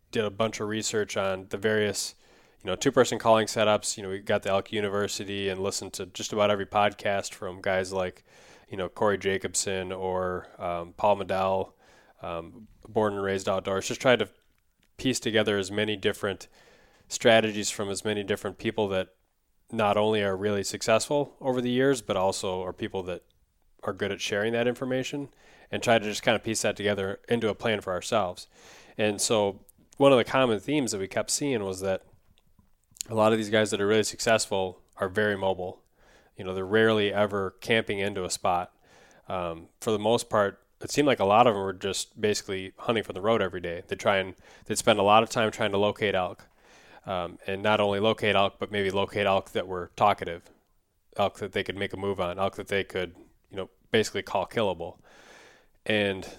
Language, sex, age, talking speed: English, male, 20-39, 205 wpm